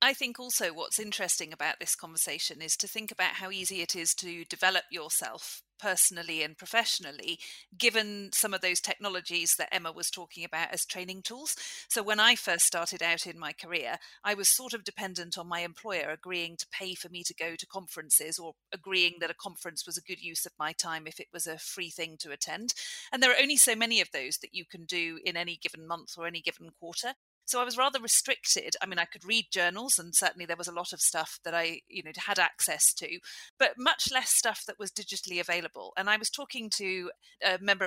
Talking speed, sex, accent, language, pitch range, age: 225 wpm, female, British, English, 170-215 Hz, 40-59